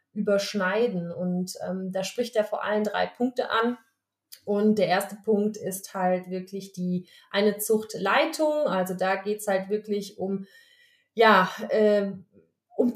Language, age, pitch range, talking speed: German, 30-49, 200-235 Hz, 145 wpm